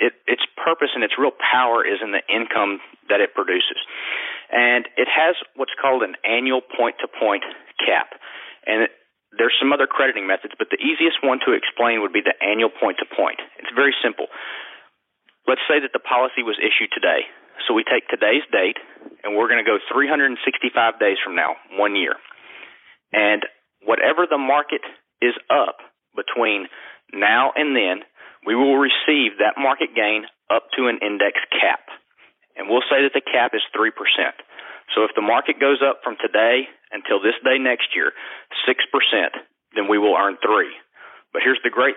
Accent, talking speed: American, 170 wpm